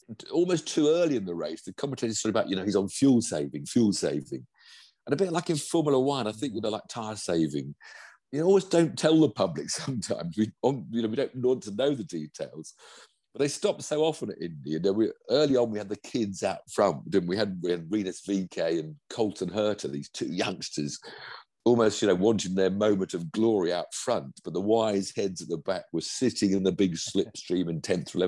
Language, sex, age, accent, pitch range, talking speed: English, male, 50-69, British, 95-140 Hz, 230 wpm